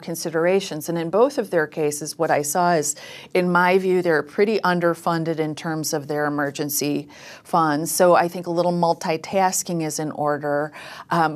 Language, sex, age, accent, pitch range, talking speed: English, female, 40-59, American, 155-185 Hz, 175 wpm